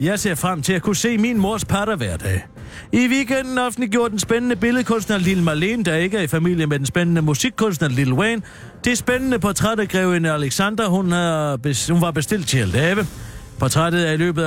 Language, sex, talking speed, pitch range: Danish, male, 205 wpm, 140-200 Hz